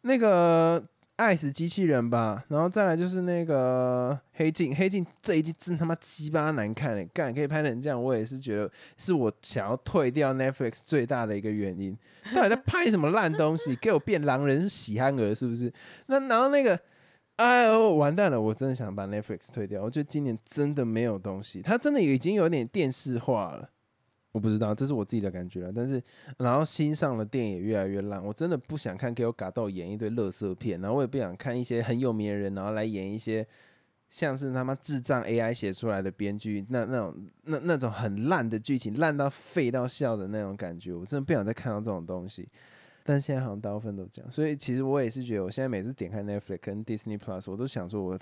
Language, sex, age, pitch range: Chinese, male, 20-39, 105-150 Hz